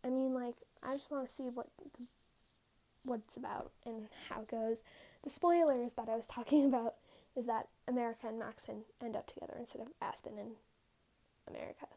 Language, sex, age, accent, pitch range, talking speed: English, female, 10-29, American, 240-290 Hz, 180 wpm